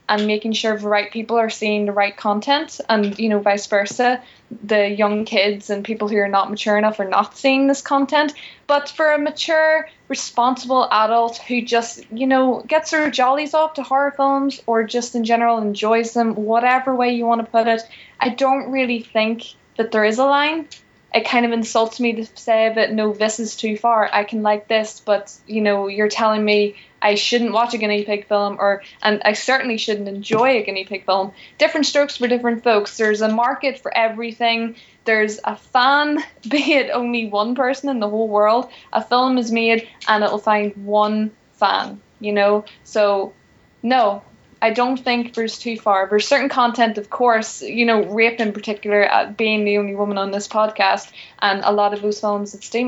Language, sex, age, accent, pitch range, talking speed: English, female, 10-29, Irish, 210-250 Hz, 200 wpm